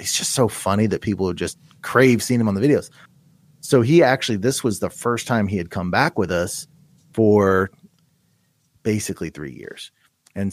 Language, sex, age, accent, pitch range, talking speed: English, male, 30-49, American, 100-130 Hz, 180 wpm